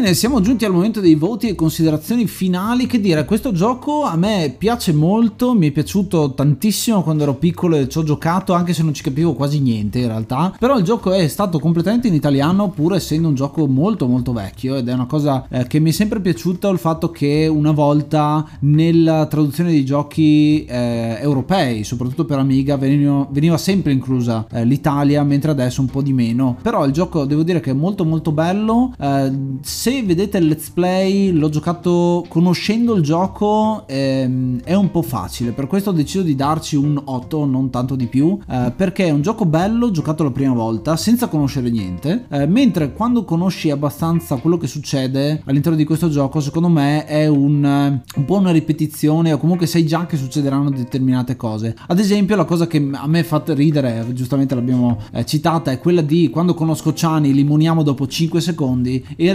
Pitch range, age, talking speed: 140-175 Hz, 20-39, 190 wpm